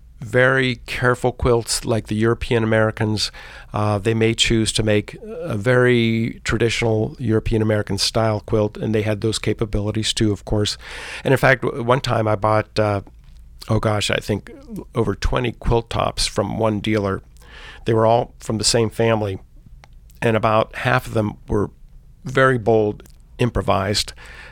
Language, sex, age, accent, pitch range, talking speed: English, male, 50-69, American, 105-125 Hz, 155 wpm